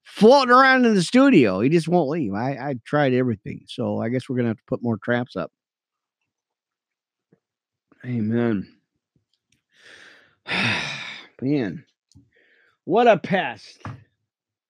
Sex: male